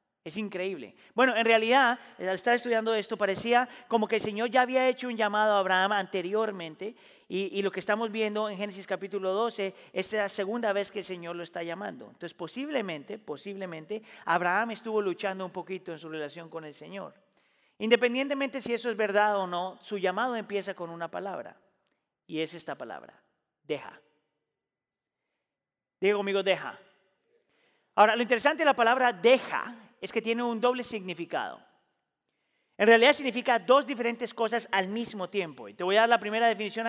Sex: male